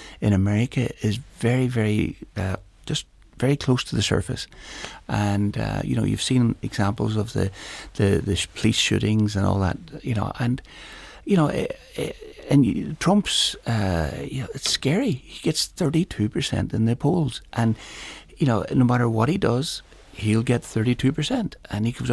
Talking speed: 170 wpm